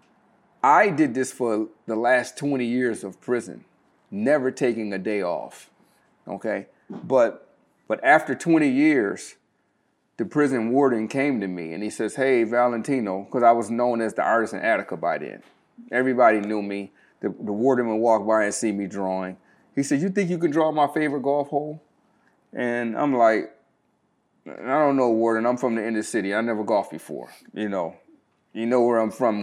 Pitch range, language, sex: 110-140 Hz, English, male